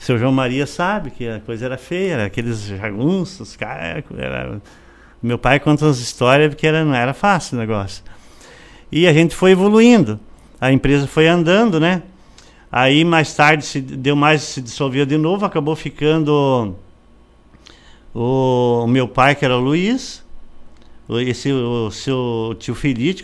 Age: 50-69